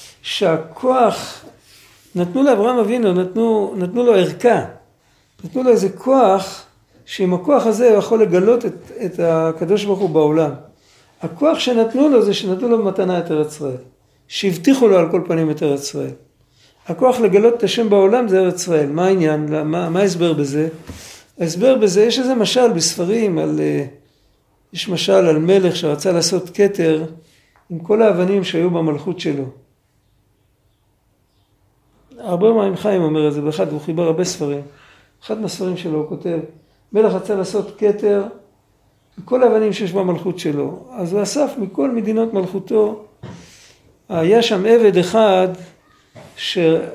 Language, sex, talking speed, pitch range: Hebrew, male, 140 wpm, 160-215 Hz